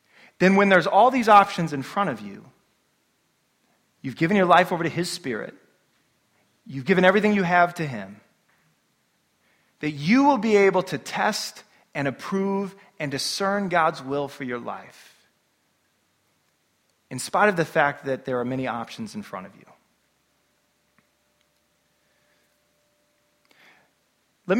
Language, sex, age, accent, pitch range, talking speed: English, male, 30-49, American, 145-205 Hz, 135 wpm